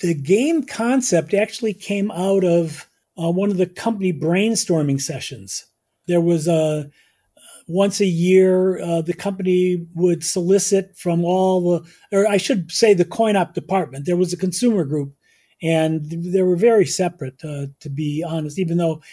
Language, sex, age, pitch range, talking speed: English, male, 40-59, 170-200 Hz, 165 wpm